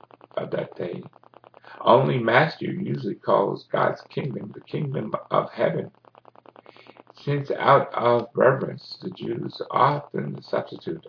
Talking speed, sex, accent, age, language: 115 wpm, male, American, 60-79, English